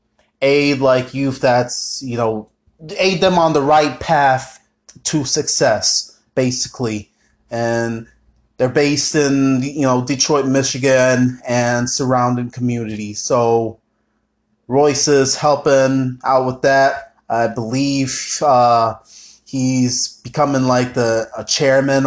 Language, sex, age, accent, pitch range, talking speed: English, male, 20-39, American, 130-160 Hz, 110 wpm